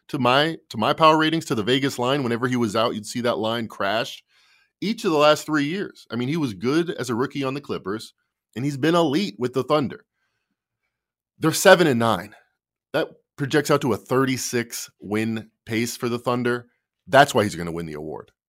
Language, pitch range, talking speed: English, 105-130 Hz, 210 wpm